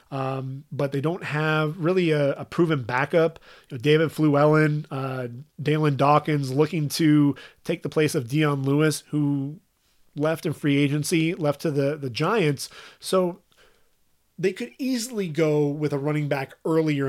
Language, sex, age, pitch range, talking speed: English, male, 30-49, 135-155 Hz, 160 wpm